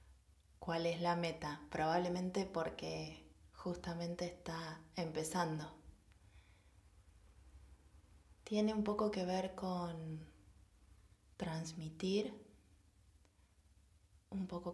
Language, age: Spanish, 20-39